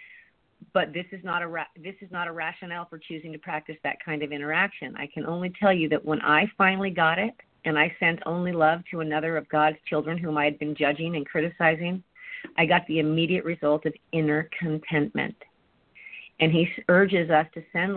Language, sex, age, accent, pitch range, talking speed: English, female, 40-59, American, 155-195 Hz, 205 wpm